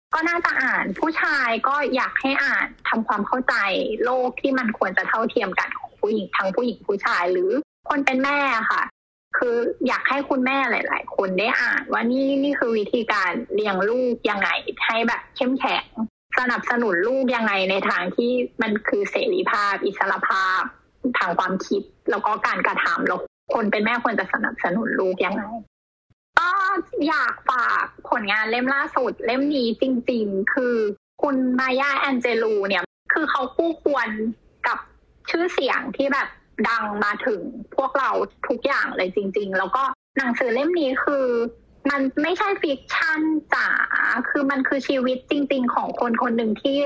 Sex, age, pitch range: female, 20-39, 230-285 Hz